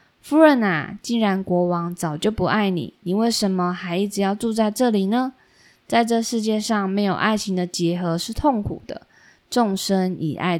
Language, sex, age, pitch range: Chinese, female, 20-39, 175-225 Hz